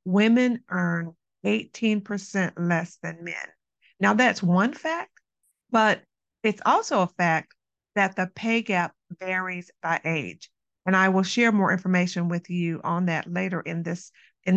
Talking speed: 145 wpm